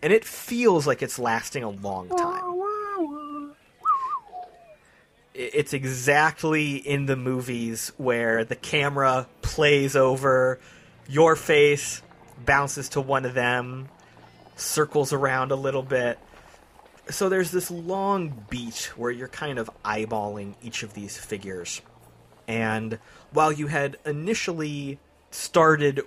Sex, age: male, 30-49